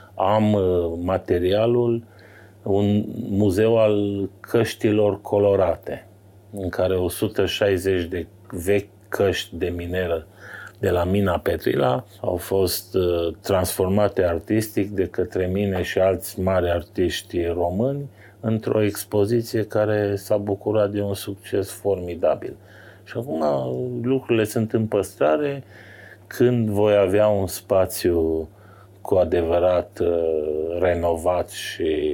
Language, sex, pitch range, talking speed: Romanian, male, 90-110 Hz, 105 wpm